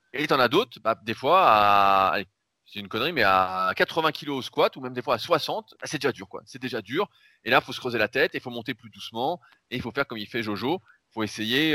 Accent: French